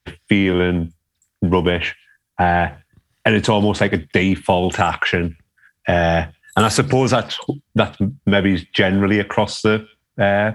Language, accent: English, British